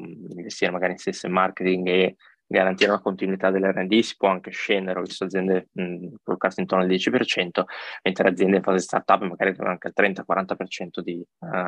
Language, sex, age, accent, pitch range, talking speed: Italian, male, 20-39, native, 90-100 Hz, 170 wpm